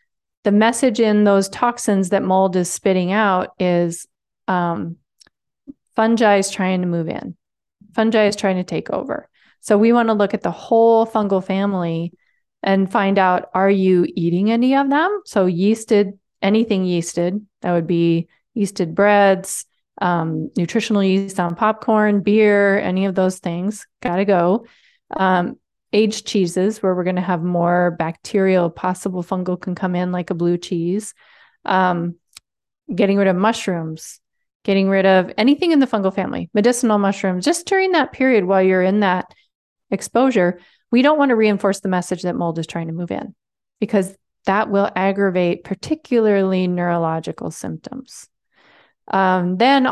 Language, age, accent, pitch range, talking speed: English, 30-49, American, 180-215 Hz, 155 wpm